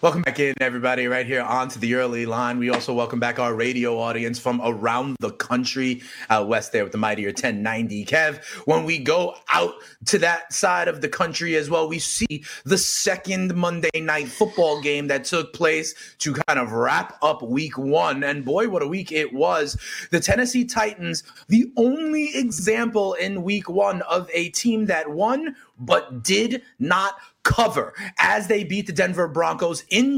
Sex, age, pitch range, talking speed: male, 30-49, 150-215 Hz, 185 wpm